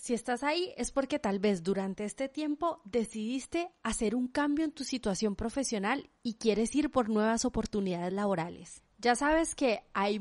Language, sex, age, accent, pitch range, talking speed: Spanish, female, 30-49, Colombian, 205-265 Hz, 170 wpm